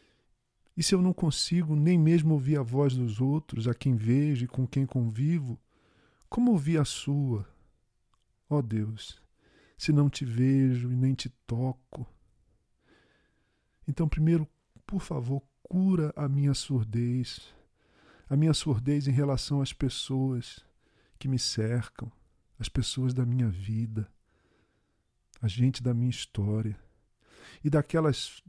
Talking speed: 135 wpm